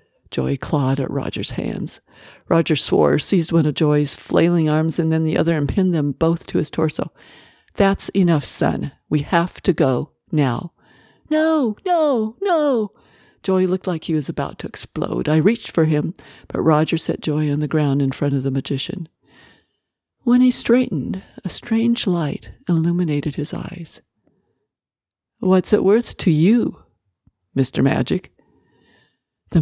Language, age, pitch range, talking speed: English, 60-79, 150-200 Hz, 155 wpm